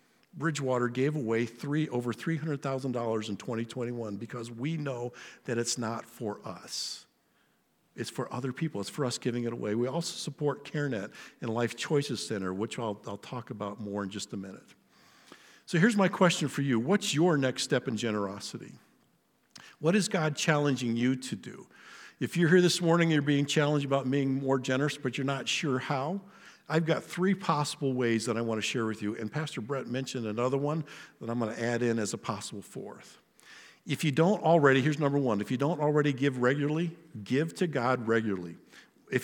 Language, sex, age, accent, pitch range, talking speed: English, male, 50-69, American, 120-155 Hz, 195 wpm